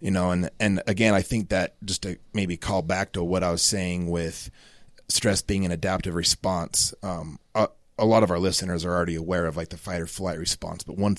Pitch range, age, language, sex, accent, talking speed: 90-100 Hz, 30-49, English, male, American, 230 wpm